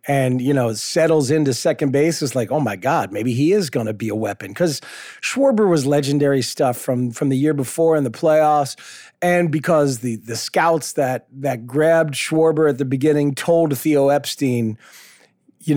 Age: 40-59